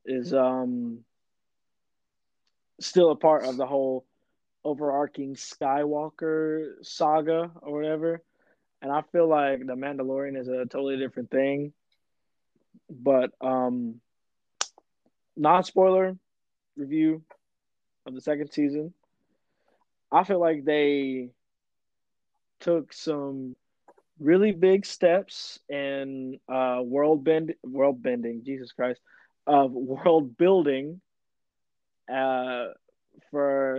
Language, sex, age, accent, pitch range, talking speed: English, male, 20-39, American, 130-160 Hz, 100 wpm